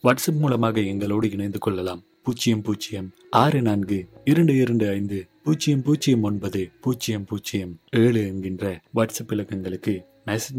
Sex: male